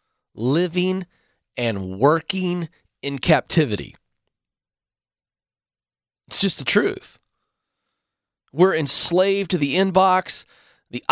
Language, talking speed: English, 80 wpm